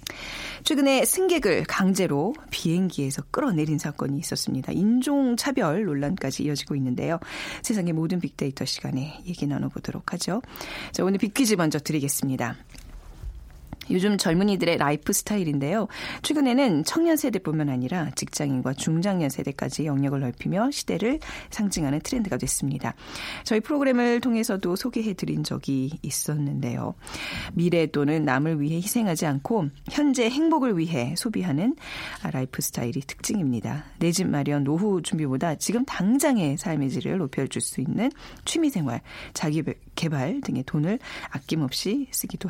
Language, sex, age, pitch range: Korean, female, 40-59, 145-230 Hz